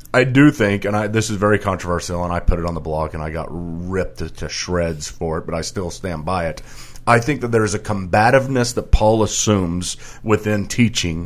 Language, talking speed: English, 225 wpm